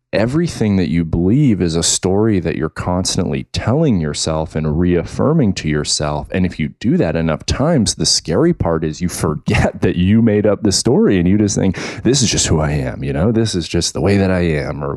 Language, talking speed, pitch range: English, 225 wpm, 80-105 Hz